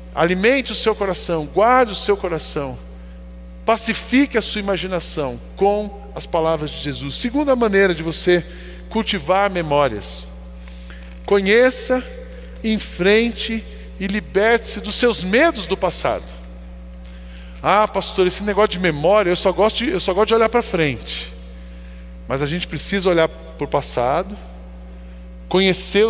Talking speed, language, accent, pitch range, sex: 125 wpm, Portuguese, Brazilian, 135-215 Hz, male